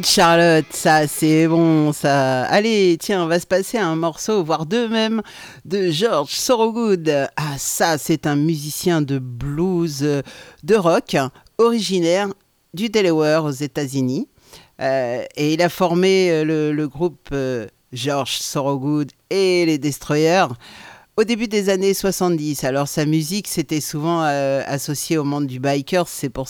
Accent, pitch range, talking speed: French, 140-180 Hz, 145 wpm